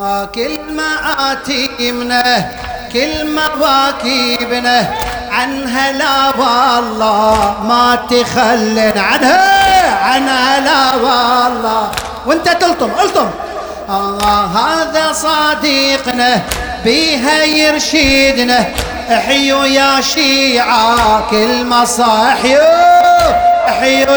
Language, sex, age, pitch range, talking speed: Arabic, male, 40-59, 210-270 Hz, 75 wpm